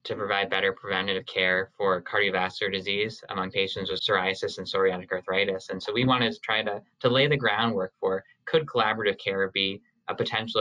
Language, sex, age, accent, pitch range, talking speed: English, male, 20-39, American, 95-120 Hz, 185 wpm